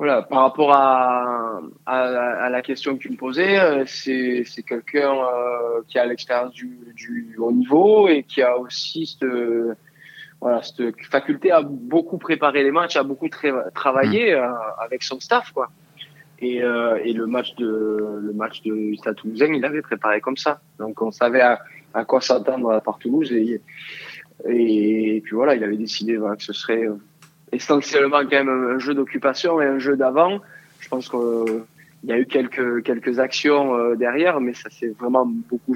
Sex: male